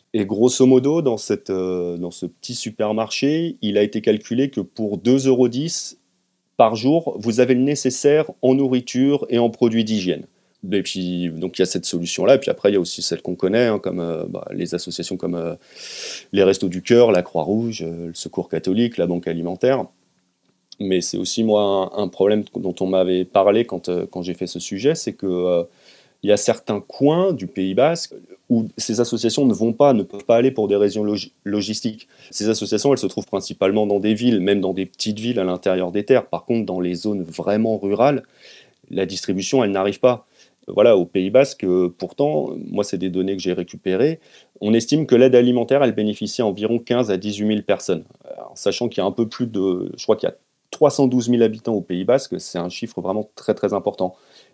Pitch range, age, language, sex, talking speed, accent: 95-120 Hz, 30-49, French, male, 215 wpm, French